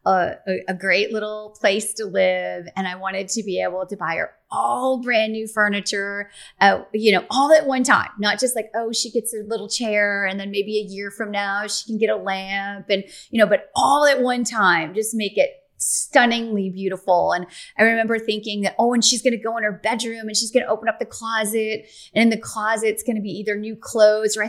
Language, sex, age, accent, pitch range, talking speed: English, female, 30-49, American, 200-235 Hz, 235 wpm